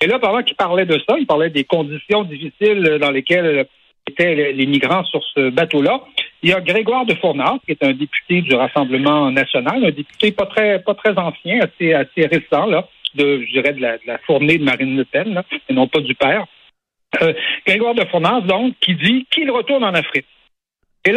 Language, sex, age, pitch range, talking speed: French, male, 60-79, 145-225 Hz, 210 wpm